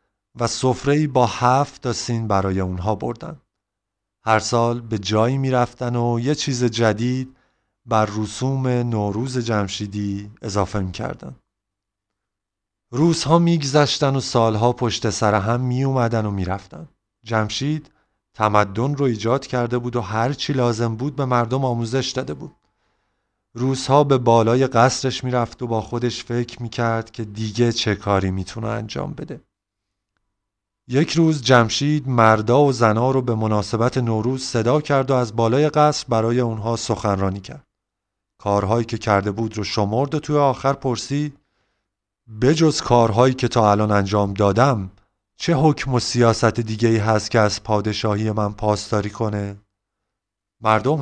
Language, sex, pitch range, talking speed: Persian, male, 105-130 Hz, 145 wpm